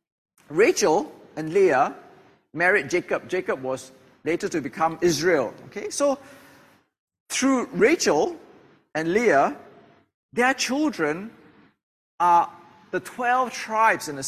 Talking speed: 105 wpm